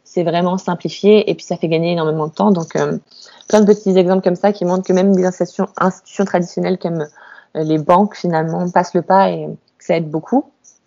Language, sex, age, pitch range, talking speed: French, female, 20-39, 180-205 Hz, 210 wpm